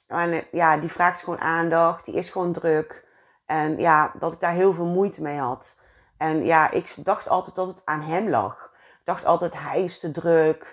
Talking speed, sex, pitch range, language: 200 wpm, female, 155-180 Hz, Dutch